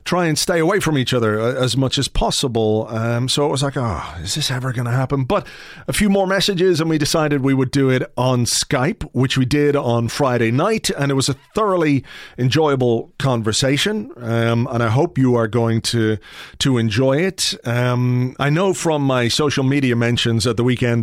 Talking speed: 205 wpm